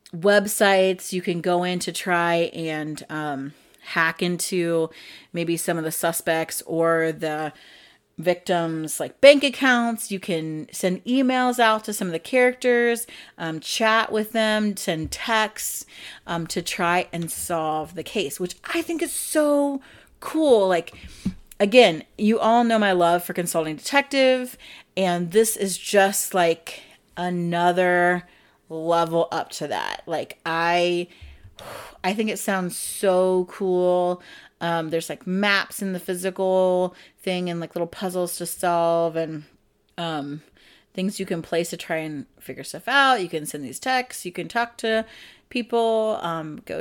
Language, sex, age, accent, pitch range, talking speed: English, female, 30-49, American, 170-220 Hz, 150 wpm